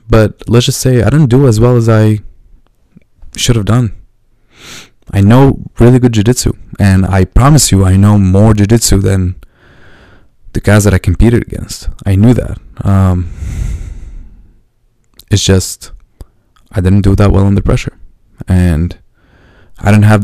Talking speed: 150 wpm